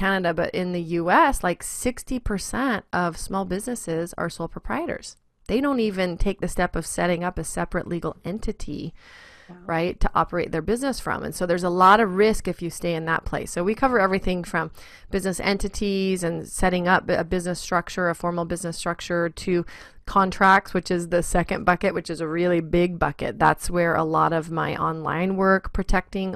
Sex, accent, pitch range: female, American, 170-200 Hz